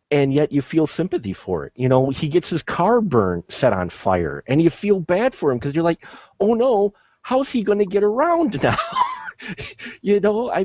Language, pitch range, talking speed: English, 110-155 Hz, 215 wpm